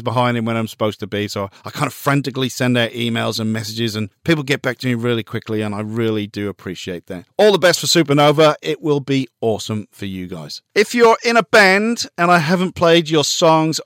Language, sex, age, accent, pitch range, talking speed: English, male, 40-59, British, 120-175 Hz, 235 wpm